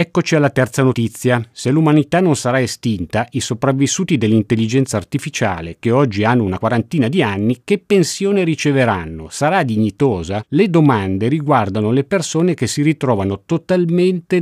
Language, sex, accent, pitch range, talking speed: Italian, male, native, 105-150 Hz, 140 wpm